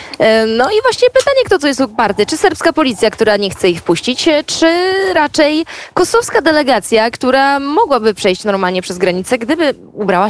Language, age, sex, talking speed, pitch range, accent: Polish, 20-39, female, 165 wpm, 220-325 Hz, native